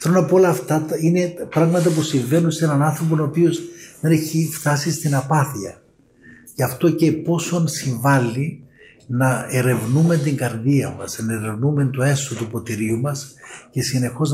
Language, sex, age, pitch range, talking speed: Greek, male, 60-79, 125-155 Hz, 160 wpm